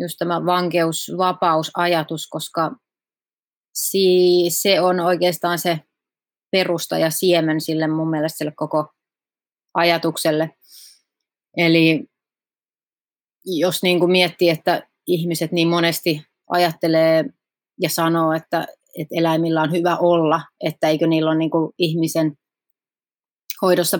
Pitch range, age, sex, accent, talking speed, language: 160-175 Hz, 30-49, female, native, 95 wpm, Finnish